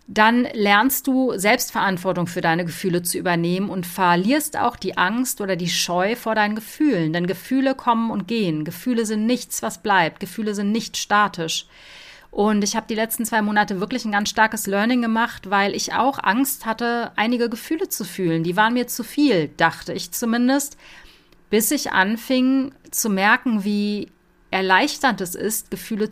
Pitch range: 180-240 Hz